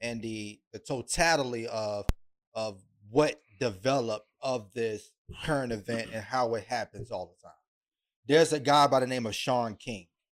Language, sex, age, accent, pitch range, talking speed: English, male, 30-49, American, 110-135 Hz, 165 wpm